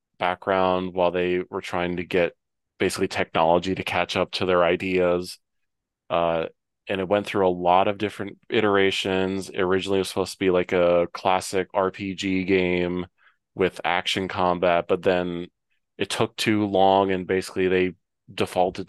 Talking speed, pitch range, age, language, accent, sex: 155 wpm, 90-100 Hz, 20-39, English, American, male